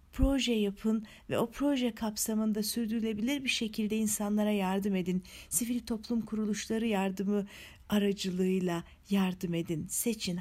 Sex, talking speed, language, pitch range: female, 115 wpm, Turkish, 185-240 Hz